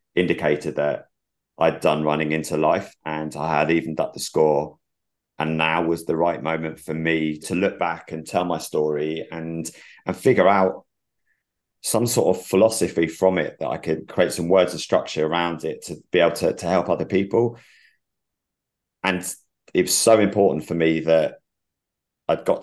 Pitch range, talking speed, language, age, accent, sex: 80-90 Hz, 180 wpm, English, 30-49, British, male